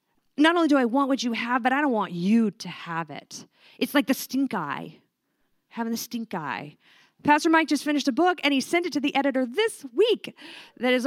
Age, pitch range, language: 30-49, 190-275 Hz, English